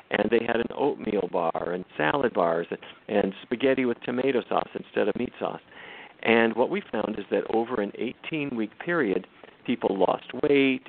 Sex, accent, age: male, American, 50-69